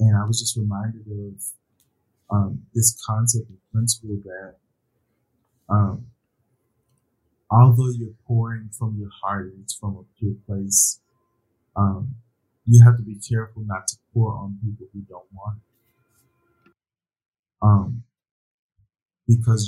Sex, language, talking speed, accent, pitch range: male, English, 125 wpm, American, 100-120 Hz